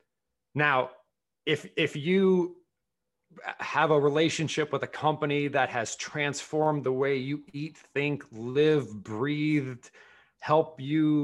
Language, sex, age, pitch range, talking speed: English, male, 30-49, 130-165 Hz, 115 wpm